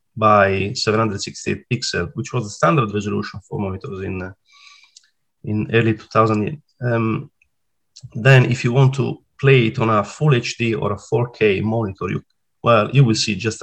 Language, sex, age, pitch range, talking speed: English, male, 30-49, 110-140 Hz, 165 wpm